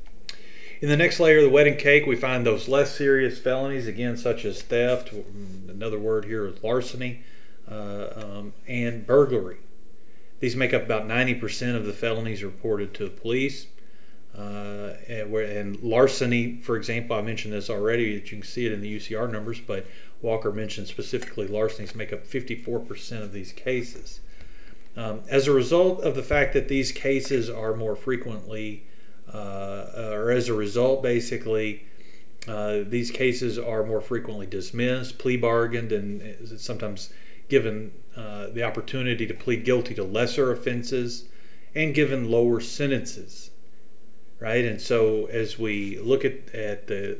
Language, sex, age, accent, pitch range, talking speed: English, male, 40-59, American, 105-125 Hz, 155 wpm